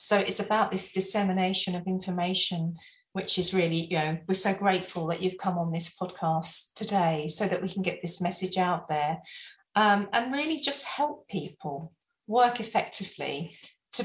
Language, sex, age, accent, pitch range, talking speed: English, female, 40-59, British, 175-220 Hz, 170 wpm